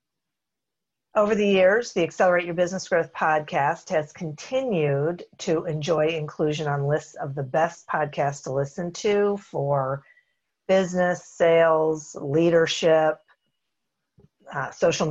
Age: 50-69